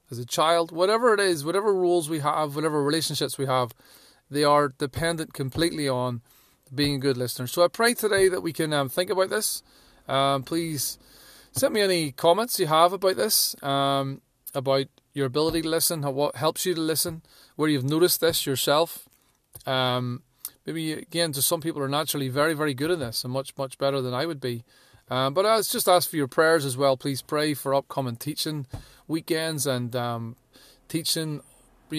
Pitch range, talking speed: 135-165 Hz, 195 wpm